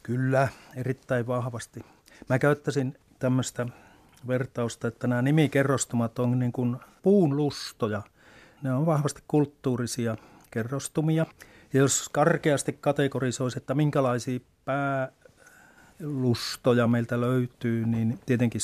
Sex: male